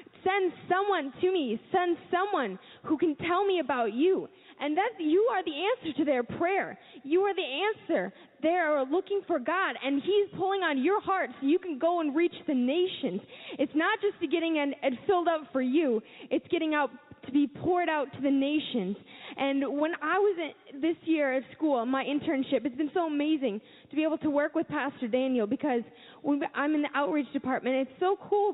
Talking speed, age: 205 wpm, 10-29